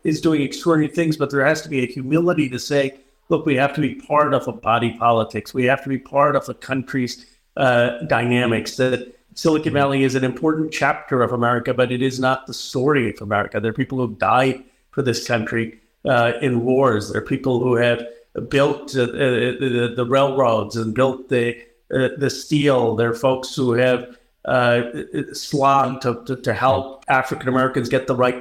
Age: 50-69